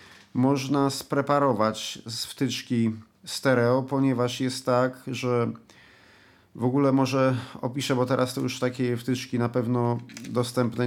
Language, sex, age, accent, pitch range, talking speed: Polish, male, 40-59, native, 115-135 Hz, 120 wpm